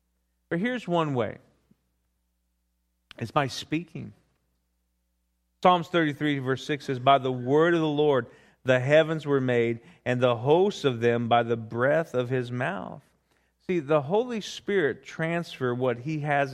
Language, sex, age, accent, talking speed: English, male, 40-59, American, 150 wpm